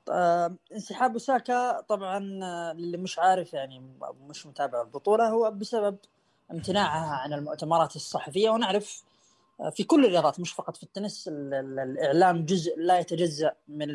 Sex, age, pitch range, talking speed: female, 20-39, 145-205 Hz, 125 wpm